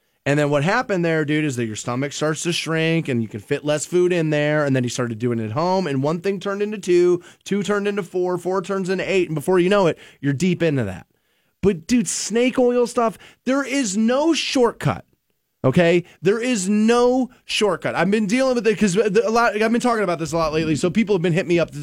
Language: English